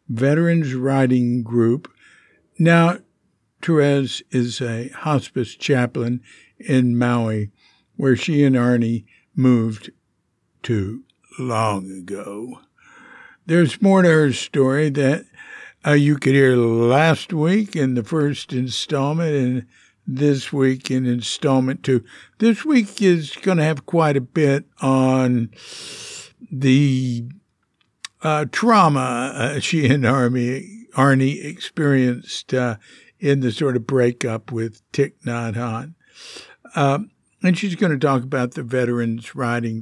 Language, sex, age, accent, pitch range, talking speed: English, male, 60-79, American, 120-150 Hz, 120 wpm